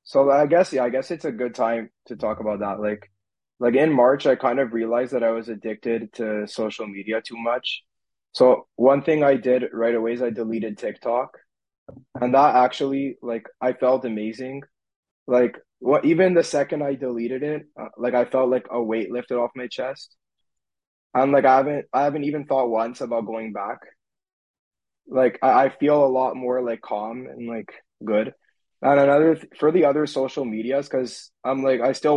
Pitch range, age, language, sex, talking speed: 115-135 Hz, 20-39, English, male, 195 wpm